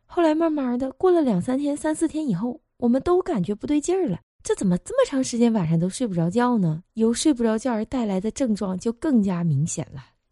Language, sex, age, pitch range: Chinese, female, 20-39, 180-260 Hz